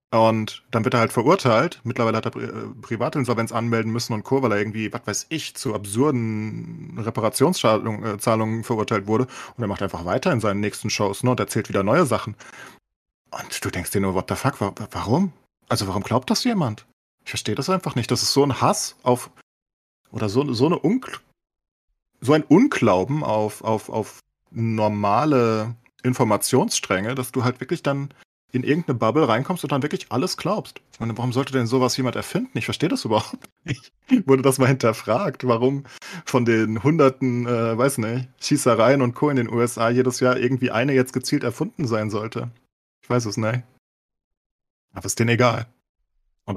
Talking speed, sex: 175 wpm, male